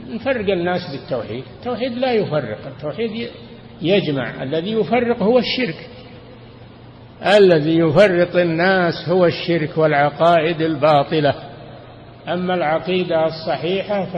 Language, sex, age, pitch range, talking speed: Arabic, male, 60-79, 130-170 Hz, 95 wpm